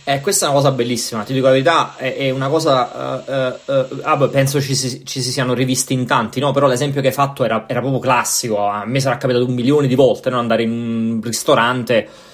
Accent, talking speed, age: native, 245 wpm, 20-39